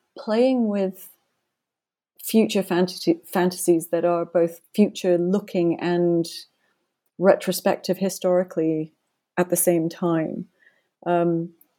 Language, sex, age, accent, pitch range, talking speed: English, female, 30-49, British, 165-190 Hz, 90 wpm